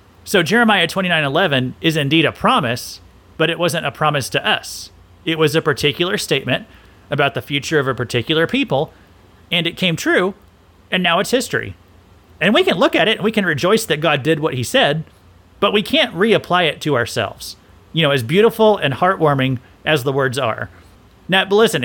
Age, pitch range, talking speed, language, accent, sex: 30-49, 120-180 Hz, 190 wpm, English, American, male